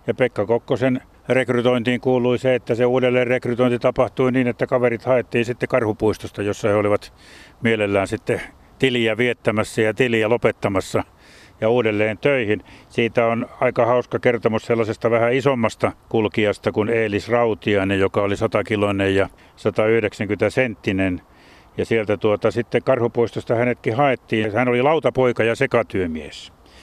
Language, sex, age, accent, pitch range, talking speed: Finnish, male, 60-79, native, 105-125 Hz, 135 wpm